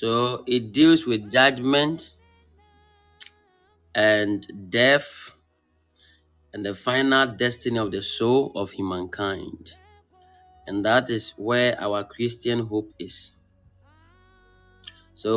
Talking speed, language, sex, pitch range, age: 100 wpm, English, male, 95-135 Hz, 30-49